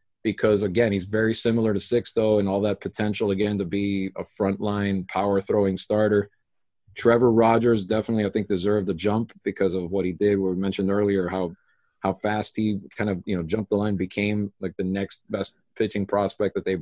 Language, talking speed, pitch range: English, 200 wpm, 100-115 Hz